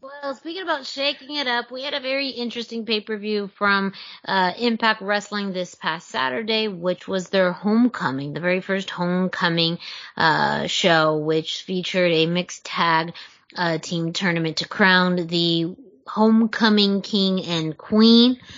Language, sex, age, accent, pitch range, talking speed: English, female, 30-49, American, 180-230 Hz, 140 wpm